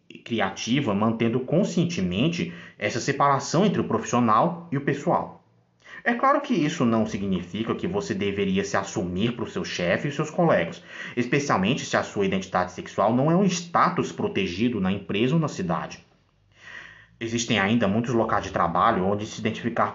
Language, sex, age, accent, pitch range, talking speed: Portuguese, male, 20-39, Brazilian, 110-175 Hz, 160 wpm